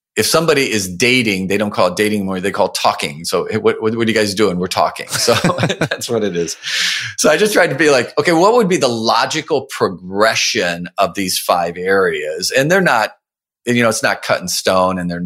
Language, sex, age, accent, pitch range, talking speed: English, male, 40-59, American, 95-140 Hz, 225 wpm